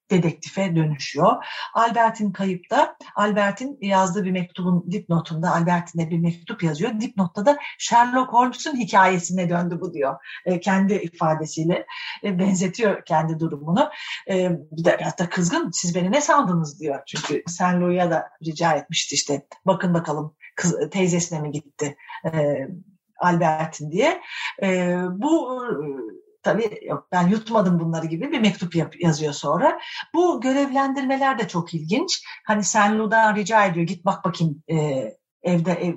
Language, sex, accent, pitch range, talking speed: Turkish, female, native, 165-215 Hz, 140 wpm